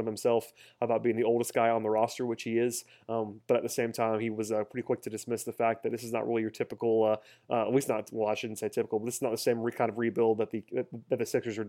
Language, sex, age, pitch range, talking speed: English, male, 20-39, 115-130 Hz, 315 wpm